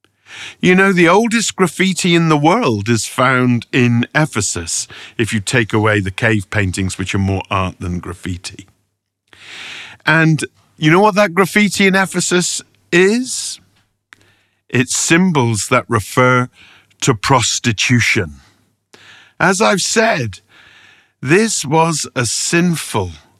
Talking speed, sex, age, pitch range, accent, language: 120 wpm, male, 50-69, 100-145 Hz, British, English